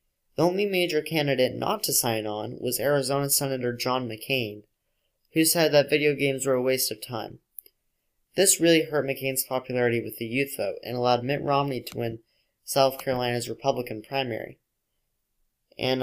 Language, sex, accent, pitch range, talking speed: English, male, American, 120-145 Hz, 160 wpm